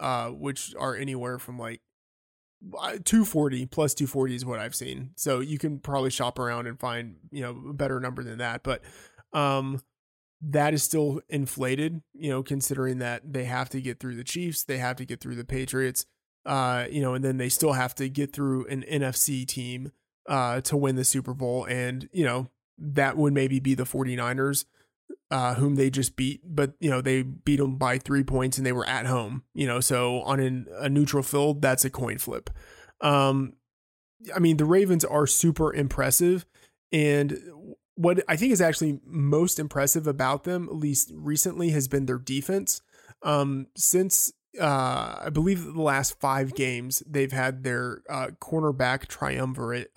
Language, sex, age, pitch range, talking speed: English, male, 20-39, 125-145 Hz, 180 wpm